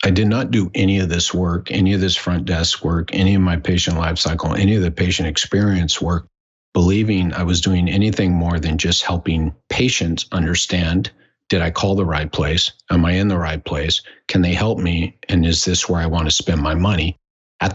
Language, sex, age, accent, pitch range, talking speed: English, male, 50-69, American, 85-95 Hz, 215 wpm